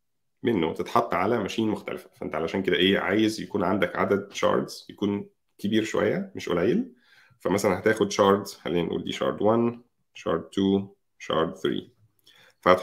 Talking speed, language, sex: 145 wpm, Arabic, male